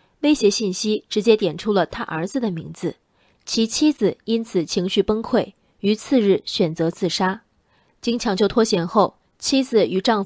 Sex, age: female, 20-39